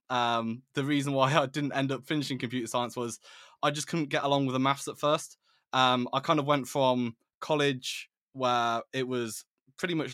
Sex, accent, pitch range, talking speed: male, British, 125-145 Hz, 200 wpm